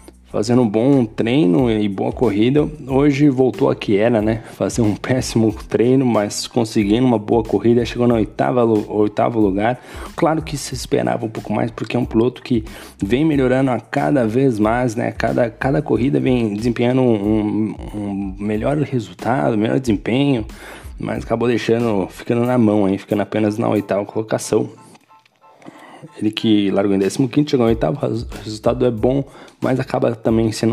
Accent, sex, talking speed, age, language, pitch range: Brazilian, male, 160 wpm, 20-39, Portuguese, 105-135 Hz